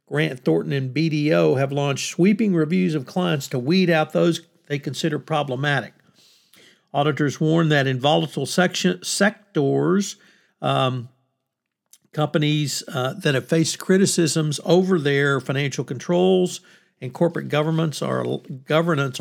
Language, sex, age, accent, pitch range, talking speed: English, male, 50-69, American, 135-170 Hz, 125 wpm